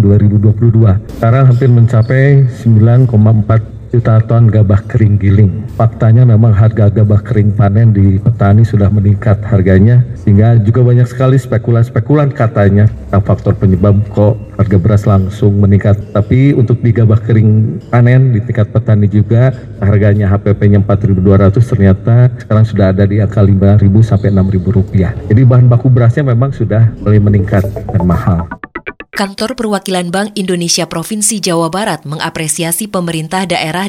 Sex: male